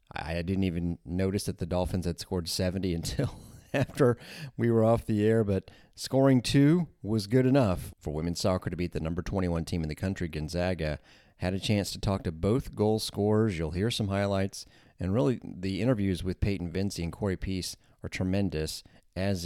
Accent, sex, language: American, male, English